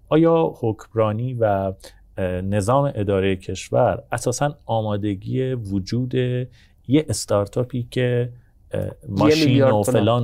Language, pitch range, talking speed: Persian, 95-120 Hz, 90 wpm